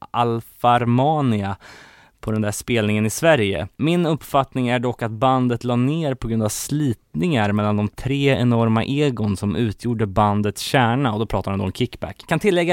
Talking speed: 170 wpm